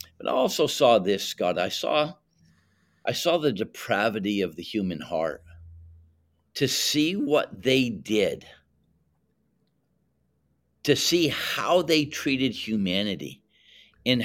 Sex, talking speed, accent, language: male, 120 wpm, American, English